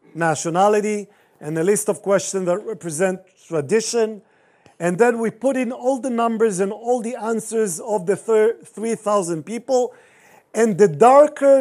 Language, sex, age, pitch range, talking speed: English, male, 50-69, 185-235 Hz, 145 wpm